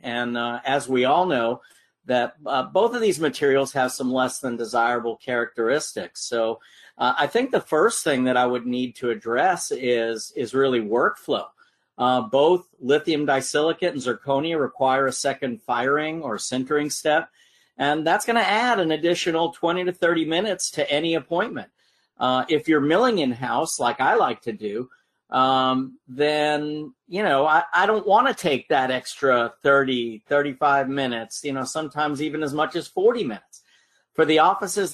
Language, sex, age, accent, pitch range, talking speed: English, male, 50-69, American, 130-165 Hz, 170 wpm